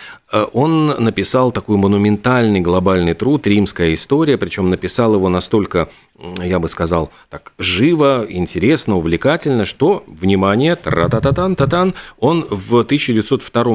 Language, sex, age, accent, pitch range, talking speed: Russian, male, 40-59, native, 95-120 Hz, 105 wpm